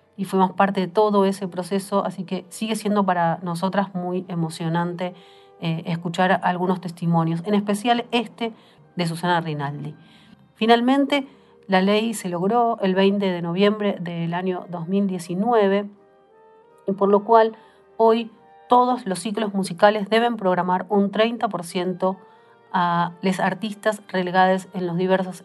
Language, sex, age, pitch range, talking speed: Spanish, female, 40-59, 170-205 Hz, 135 wpm